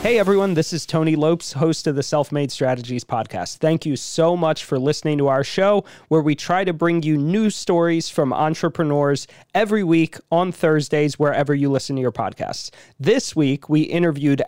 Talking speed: 185 wpm